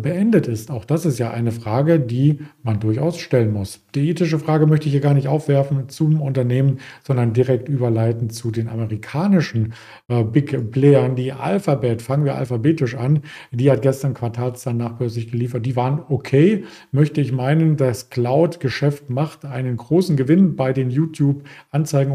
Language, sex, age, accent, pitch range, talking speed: German, male, 50-69, German, 120-145 Hz, 165 wpm